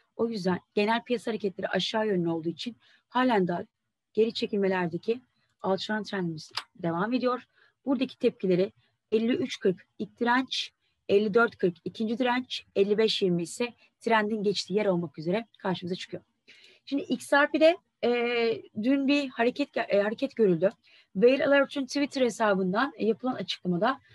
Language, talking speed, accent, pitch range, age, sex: Turkish, 120 wpm, native, 195-260 Hz, 30-49, female